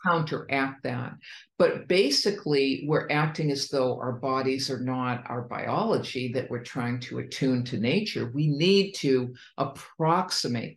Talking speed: 140 wpm